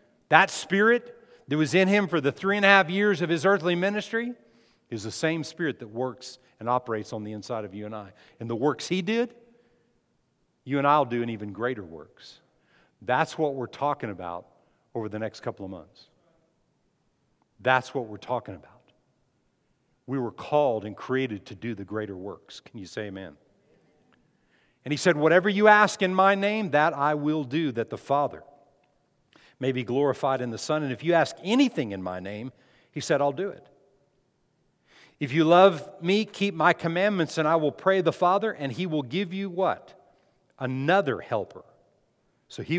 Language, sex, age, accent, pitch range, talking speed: English, male, 50-69, American, 125-185 Hz, 190 wpm